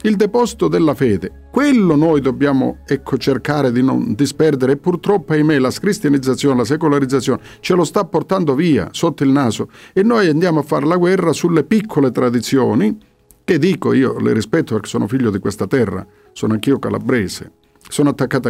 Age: 50-69